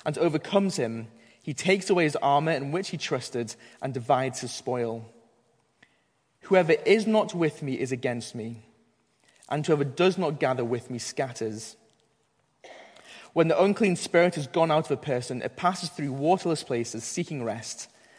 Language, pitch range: English, 125-170 Hz